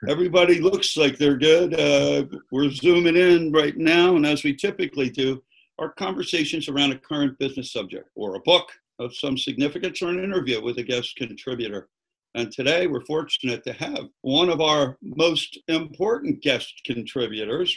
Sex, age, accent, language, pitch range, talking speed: male, 60-79, American, English, 130-160 Hz, 165 wpm